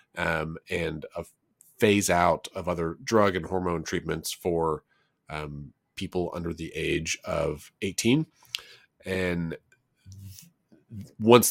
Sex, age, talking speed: male, 30-49, 110 wpm